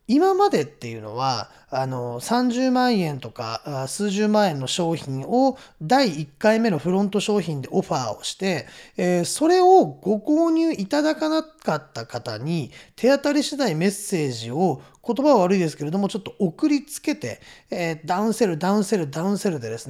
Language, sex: Japanese, male